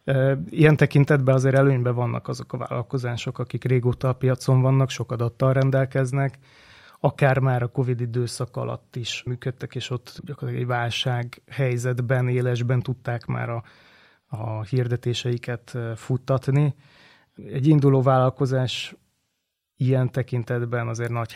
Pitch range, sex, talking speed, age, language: 120-135 Hz, male, 125 wpm, 20-39, Hungarian